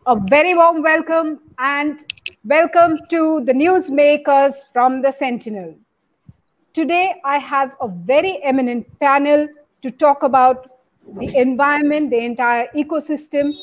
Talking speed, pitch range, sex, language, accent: 120 wpm, 245-290 Hz, female, English, Indian